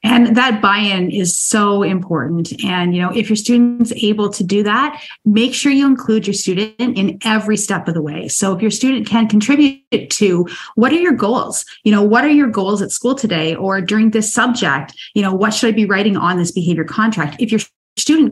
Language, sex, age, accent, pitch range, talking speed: English, female, 30-49, American, 175-230 Hz, 220 wpm